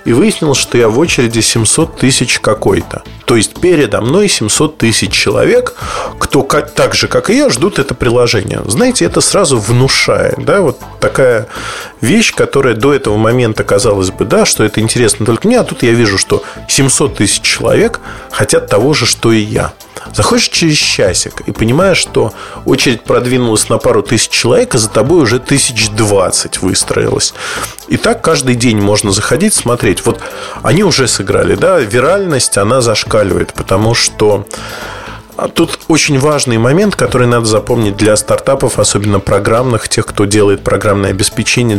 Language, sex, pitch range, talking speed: Russian, male, 110-155 Hz, 160 wpm